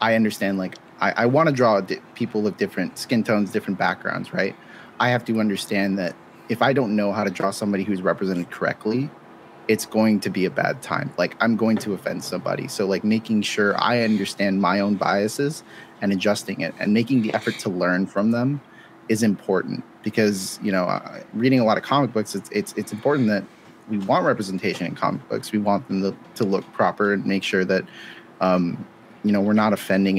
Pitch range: 95-110 Hz